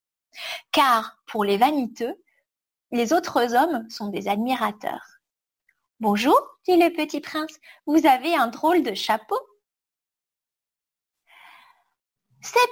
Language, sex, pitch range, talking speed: English, female, 240-370 Hz, 105 wpm